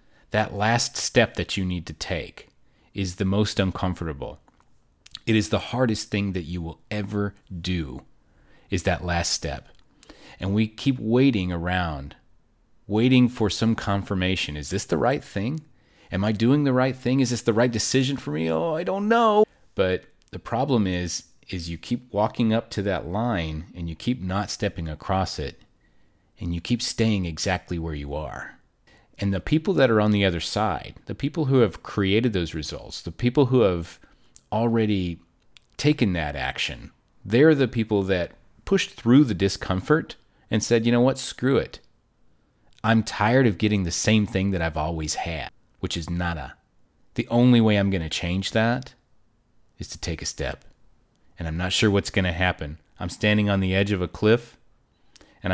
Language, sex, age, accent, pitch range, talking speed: English, male, 40-59, American, 90-115 Hz, 180 wpm